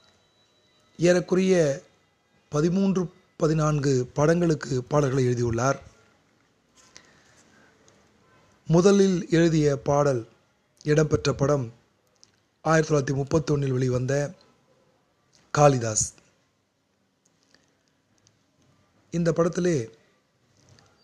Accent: native